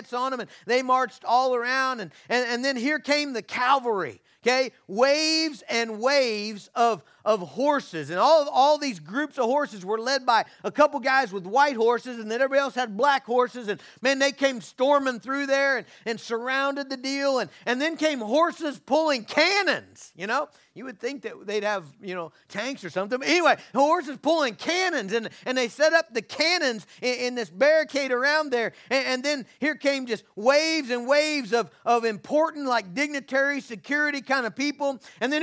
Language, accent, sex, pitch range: English, American, male, 235-285 Hz